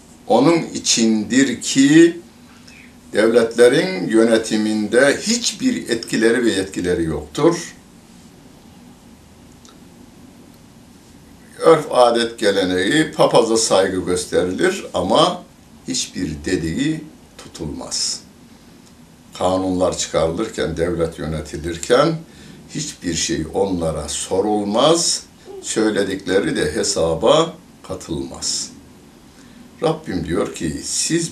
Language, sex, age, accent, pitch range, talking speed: Turkish, male, 60-79, native, 80-135 Hz, 70 wpm